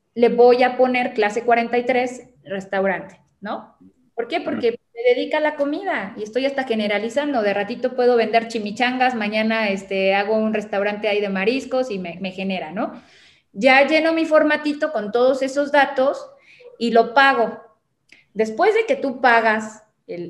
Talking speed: 165 wpm